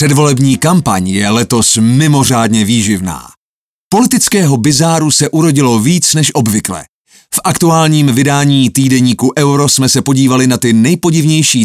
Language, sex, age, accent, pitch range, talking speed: Czech, male, 30-49, native, 115-160 Hz, 125 wpm